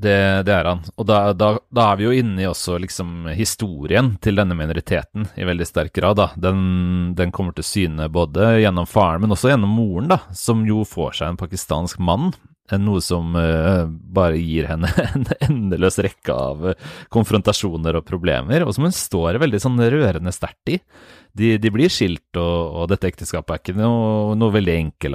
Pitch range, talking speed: 85-110 Hz, 180 wpm